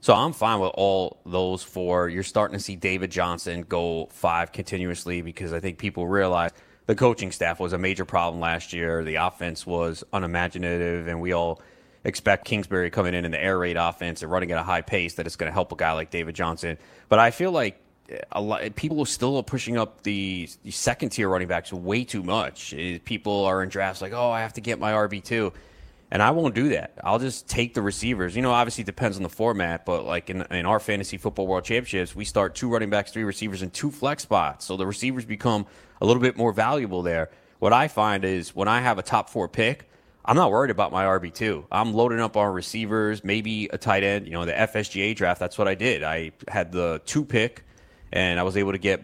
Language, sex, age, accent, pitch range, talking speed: English, male, 30-49, American, 90-110 Hz, 230 wpm